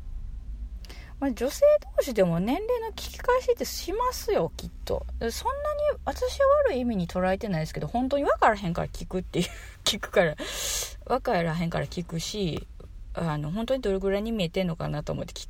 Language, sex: Japanese, female